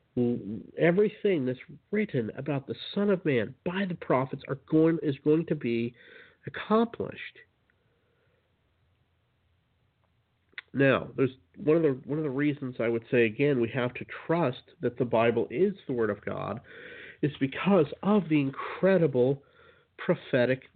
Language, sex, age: English, male, 50-69